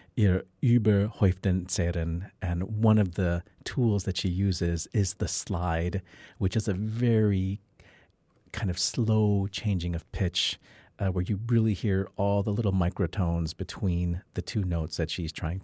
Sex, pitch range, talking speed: male, 85-105 Hz, 140 wpm